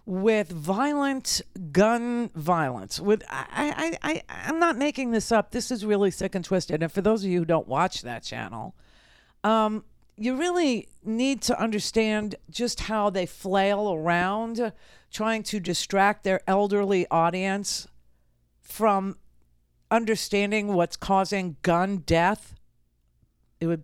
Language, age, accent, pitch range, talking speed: English, 50-69, American, 155-220 Hz, 135 wpm